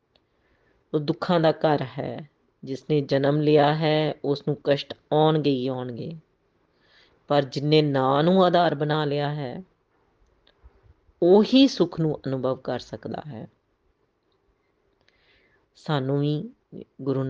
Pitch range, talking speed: 130-150 Hz, 120 wpm